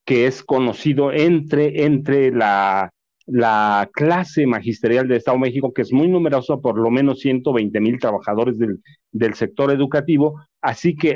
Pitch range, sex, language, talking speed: 120-160 Hz, male, Spanish, 155 wpm